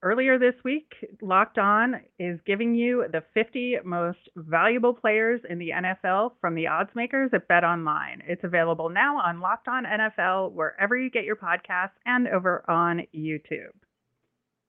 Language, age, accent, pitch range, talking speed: English, 30-49, American, 170-215 Hz, 160 wpm